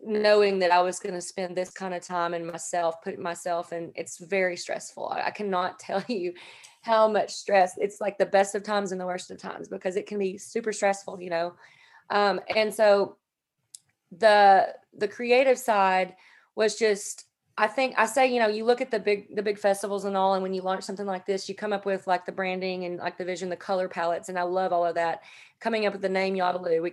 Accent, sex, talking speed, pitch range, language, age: American, female, 230 wpm, 180-205 Hz, English, 30-49